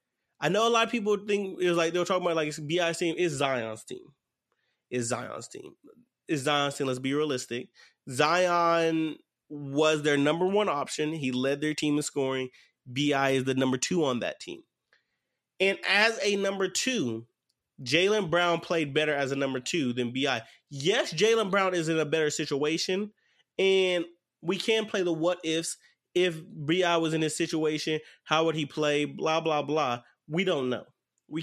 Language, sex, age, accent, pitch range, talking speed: English, male, 20-39, American, 140-175 Hz, 185 wpm